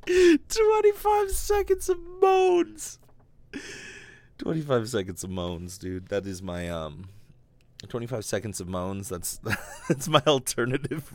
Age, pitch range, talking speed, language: 30-49, 90-125 Hz, 115 wpm, English